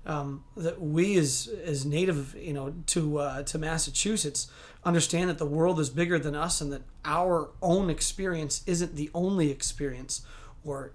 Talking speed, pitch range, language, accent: 165 wpm, 145-175 Hz, English, American